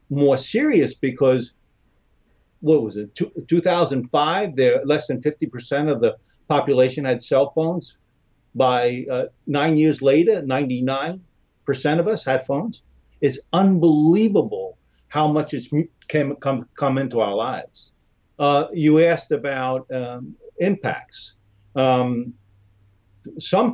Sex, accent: male, American